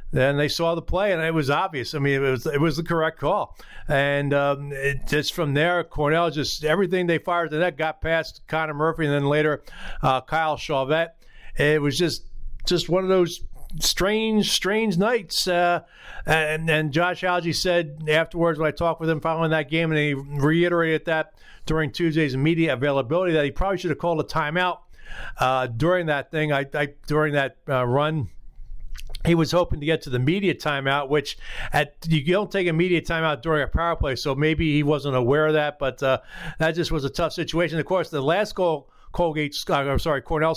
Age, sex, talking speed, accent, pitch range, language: 50-69, male, 205 wpm, American, 140-170 Hz, English